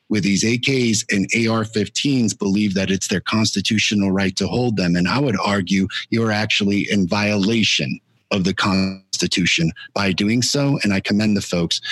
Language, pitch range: English, 95-115 Hz